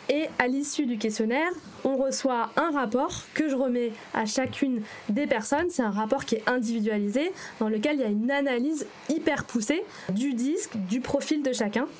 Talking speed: 185 wpm